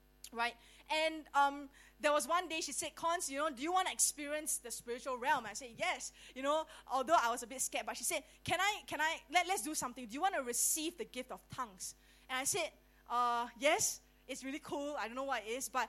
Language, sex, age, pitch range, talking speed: English, female, 20-39, 235-305 Hz, 255 wpm